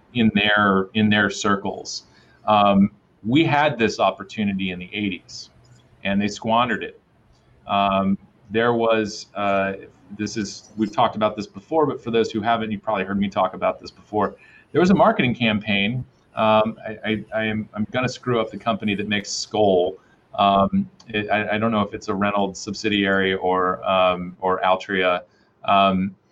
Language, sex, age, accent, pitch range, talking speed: English, male, 30-49, American, 100-115 Hz, 175 wpm